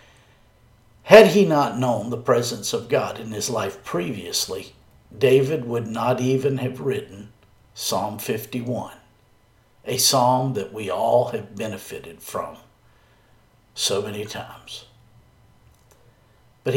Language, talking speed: English, 115 wpm